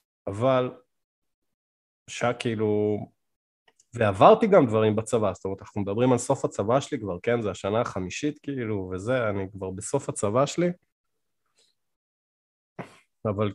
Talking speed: 125 wpm